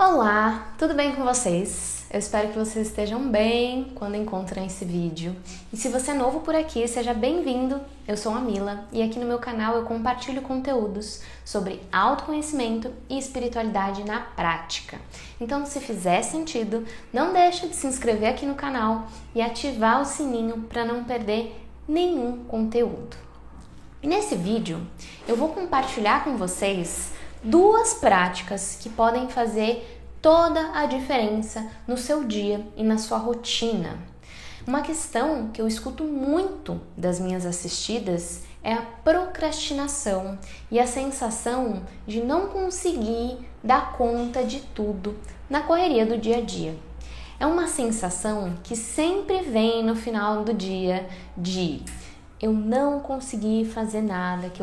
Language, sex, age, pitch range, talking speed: Portuguese, female, 10-29, 205-270 Hz, 145 wpm